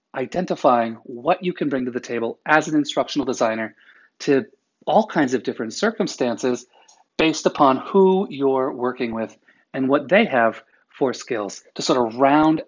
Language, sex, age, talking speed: English, male, 30-49, 160 wpm